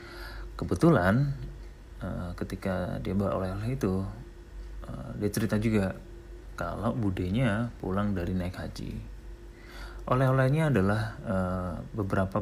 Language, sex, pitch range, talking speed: Indonesian, male, 95-115 Hz, 85 wpm